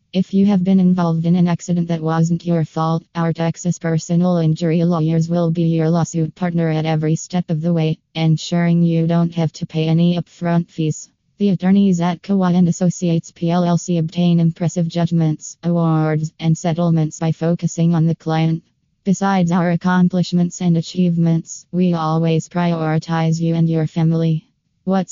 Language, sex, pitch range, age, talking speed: English, female, 165-180 Hz, 20-39, 160 wpm